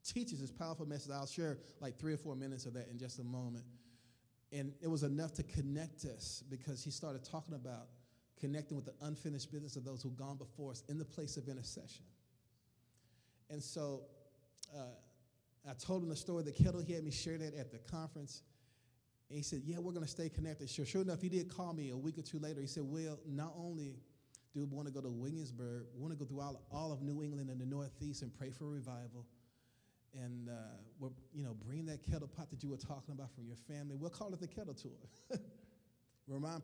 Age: 30-49